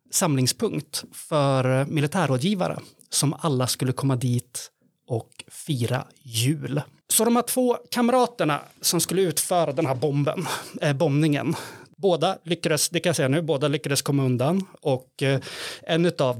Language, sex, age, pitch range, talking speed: Swedish, male, 30-49, 130-175 Hz, 145 wpm